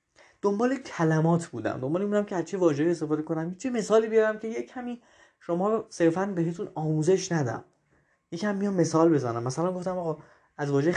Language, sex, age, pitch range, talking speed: Persian, male, 20-39, 140-195 Hz, 160 wpm